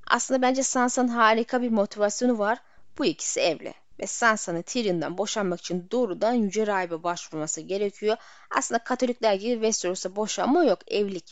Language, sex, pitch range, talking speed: Turkish, female, 190-245 Hz, 145 wpm